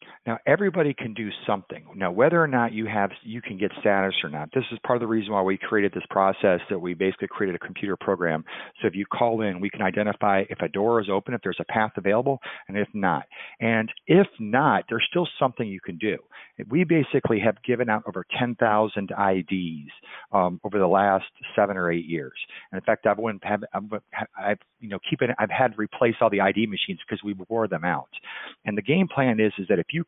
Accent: American